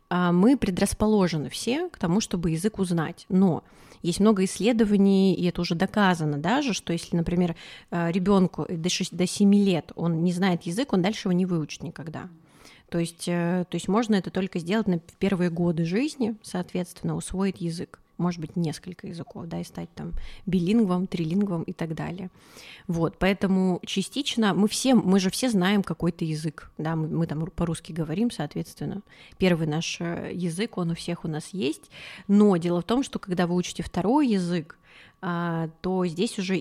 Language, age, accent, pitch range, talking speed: Russian, 20-39, native, 170-200 Hz, 165 wpm